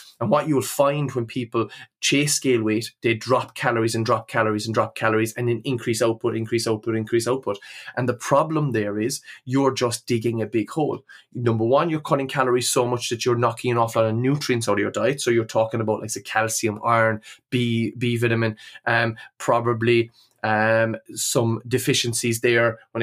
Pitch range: 115-125 Hz